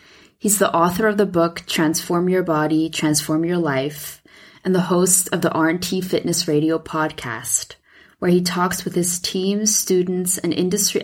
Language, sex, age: English, female, 20-39